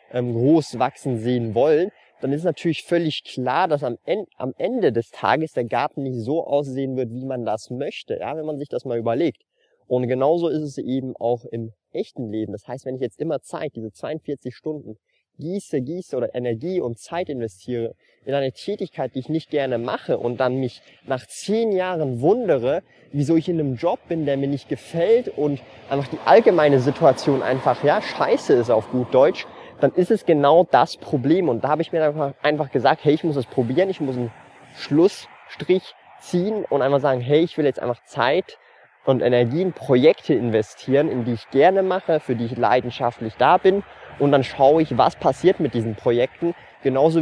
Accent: German